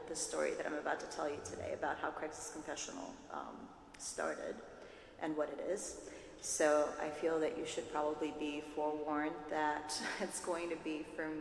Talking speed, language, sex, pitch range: 180 wpm, English, female, 155-185 Hz